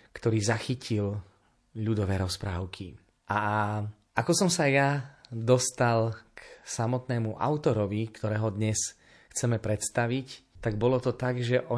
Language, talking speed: Slovak, 115 wpm